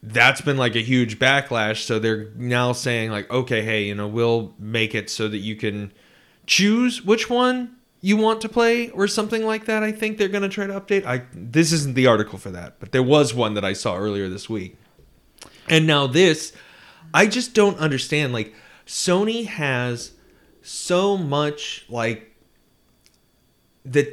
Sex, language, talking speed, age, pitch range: male, English, 180 wpm, 30-49, 110-165 Hz